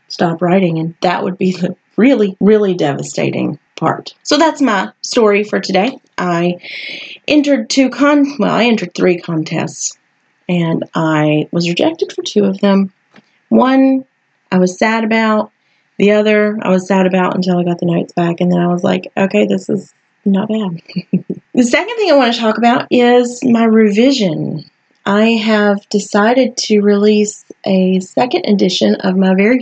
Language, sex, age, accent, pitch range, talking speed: English, female, 30-49, American, 180-235 Hz, 170 wpm